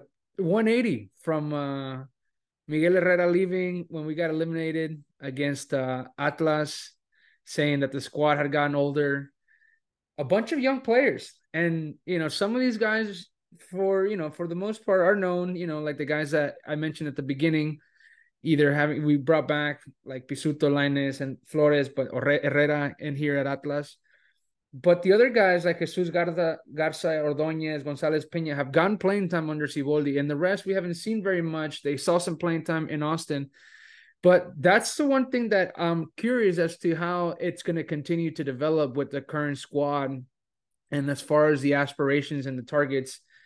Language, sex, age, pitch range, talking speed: English, male, 20-39, 140-175 Hz, 180 wpm